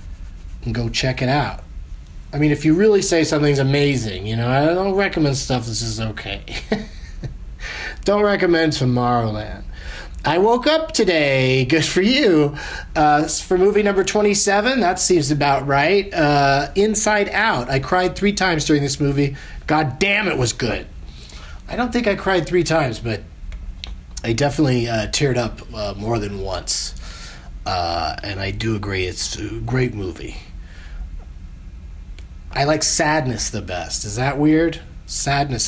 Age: 30-49